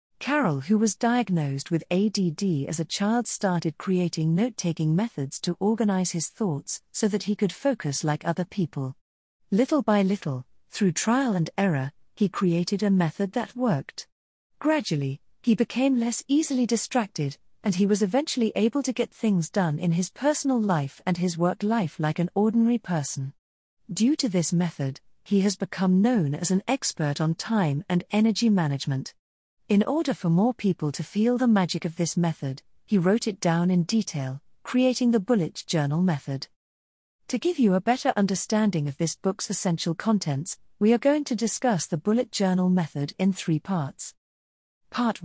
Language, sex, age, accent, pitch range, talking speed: English, female, 40-59, British, 155-220 Hz, 170 wpm